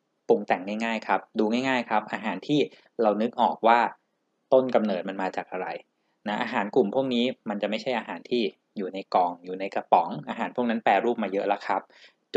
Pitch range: 105-130 Hz